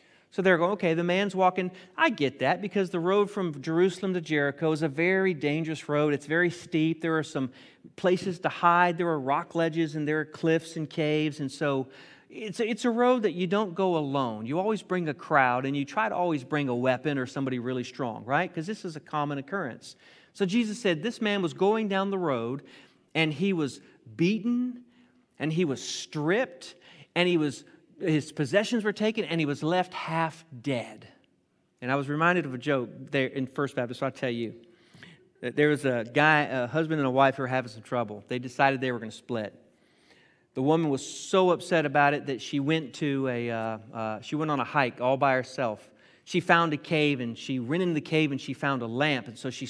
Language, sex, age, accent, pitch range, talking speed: English, male, 40-59, American, 135-180 Hz, 220 wpm